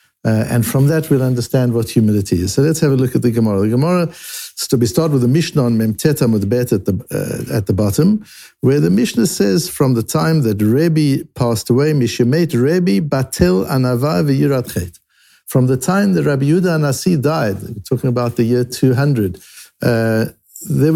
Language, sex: English, male